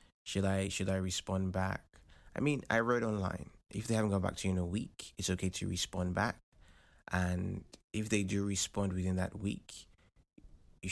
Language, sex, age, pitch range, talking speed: English, male, 20-39, 90-105 Hz, 190 wpm